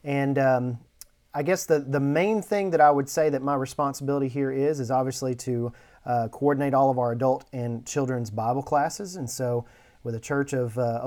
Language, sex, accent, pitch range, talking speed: English, male, American, 120-140 Hz, 200 wpm